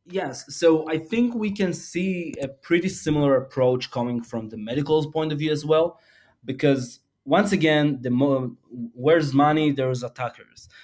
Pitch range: 120-145 Hz